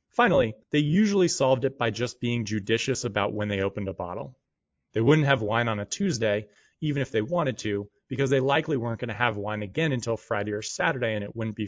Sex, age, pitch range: male, 30-49, 105-140 Hz